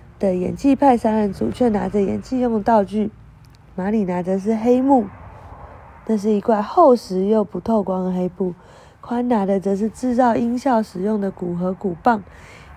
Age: 20-39